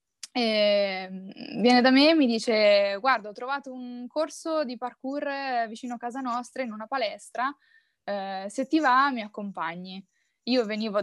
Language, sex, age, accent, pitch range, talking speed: Italian, female, 20-39, native, 190-250 Hz, 160 wpm